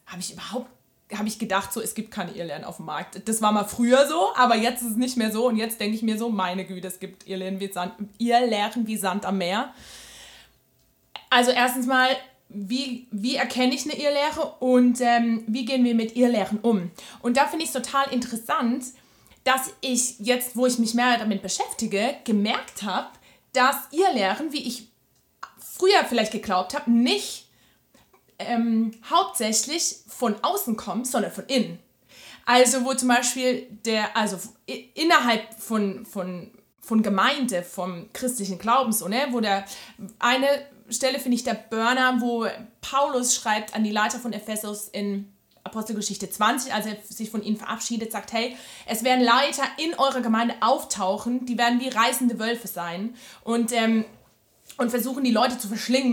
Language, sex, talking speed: German, female, 170 wpm